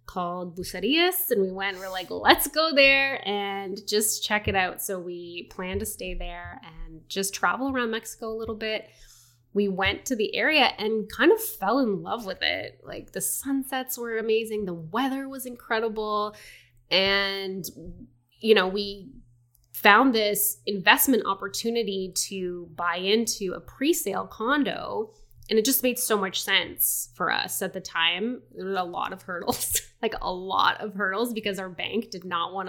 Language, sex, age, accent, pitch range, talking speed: English, female, 20-39, American, 175-240 Hz, 175 wpm